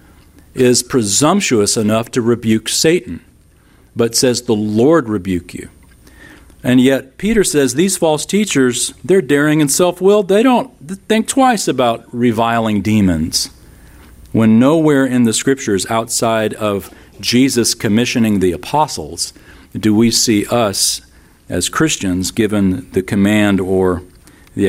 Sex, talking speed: male, 125 wpm